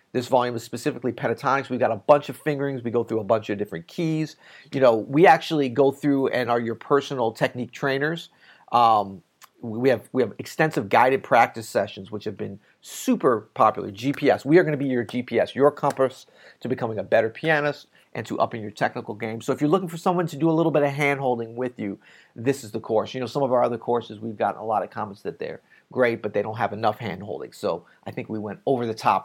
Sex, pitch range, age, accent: male, 115-145 Hz, 40-59, American